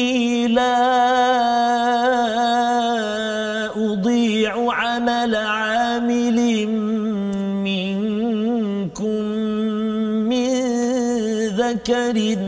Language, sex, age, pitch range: Malayalam, male, 40-59, 220-255 Hz